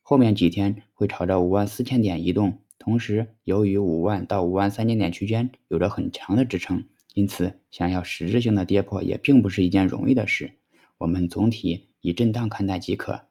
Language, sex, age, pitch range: Chinese, male, 20-39, 95-120 Hz